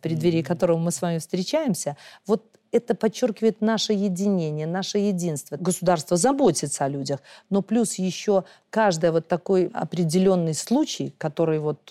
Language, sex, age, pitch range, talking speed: Russian, female, 40-59, 160-200 Hz, 135 wpm